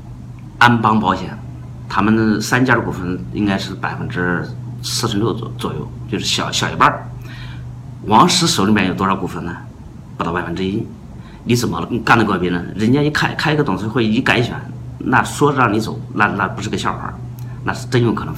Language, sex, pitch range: Chinese, male, 95-125 Hz